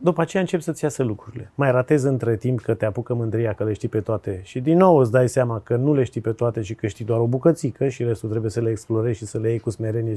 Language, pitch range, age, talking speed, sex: Romanian, 115-145 Hz, 30-49, 295 wpm, male